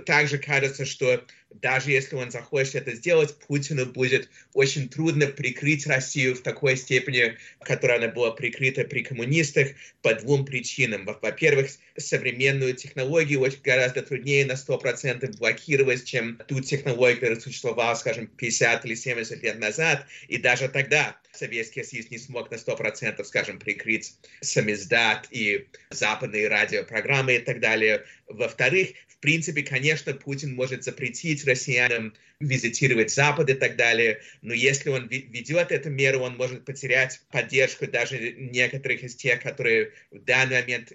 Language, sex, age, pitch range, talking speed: Russian, male, 30-49, 120-145 Hz, 140 wpm